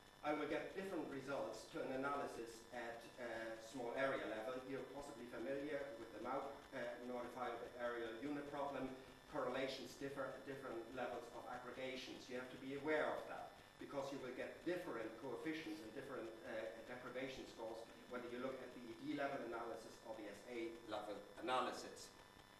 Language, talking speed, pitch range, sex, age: English, 160 wpm, 115-140 Hz, male, 40-59